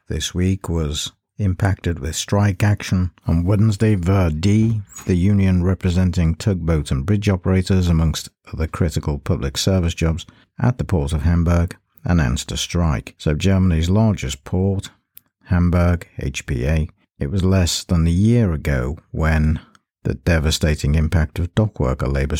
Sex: male